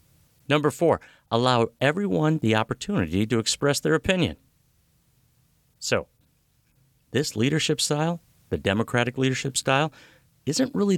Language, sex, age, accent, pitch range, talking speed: English, male, 50-69, American, 95-135 Hz, 110 wpm